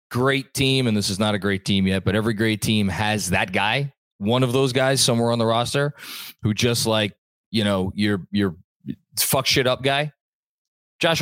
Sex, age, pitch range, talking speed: male, 20-39, 105-140 Hz, 200 wpm